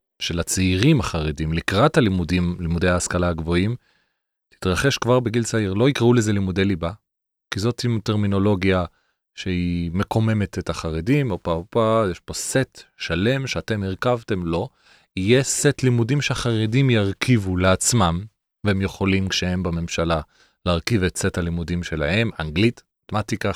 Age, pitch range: 30-49, 90-115 Hz